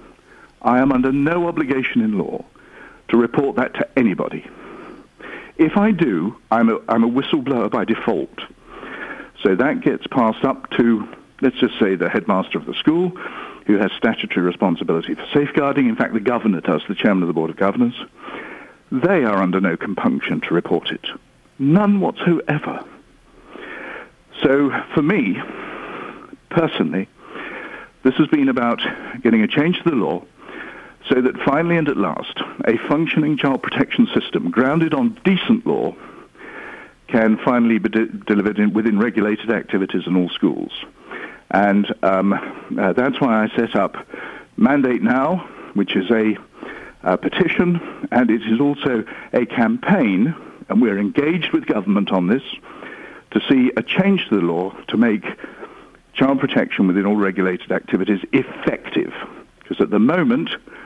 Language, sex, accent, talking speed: English, male, British, 150 wpm